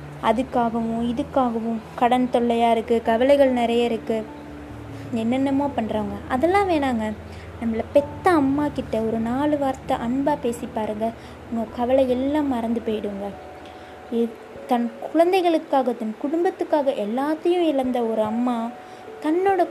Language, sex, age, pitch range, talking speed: Tamil, female, 20-39, 230-300 Hz, 105 wpm